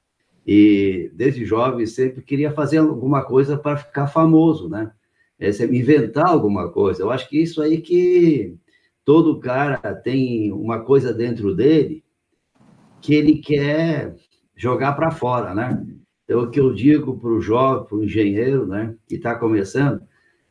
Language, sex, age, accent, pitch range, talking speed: Portuguese, male, 60-79, Brazilian, 115-155 Hz, 145 wpm